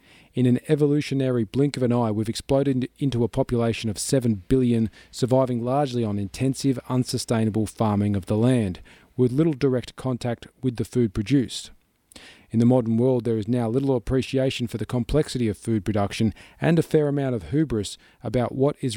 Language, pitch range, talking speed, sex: English, 105-130 Hz, 175 wpm, male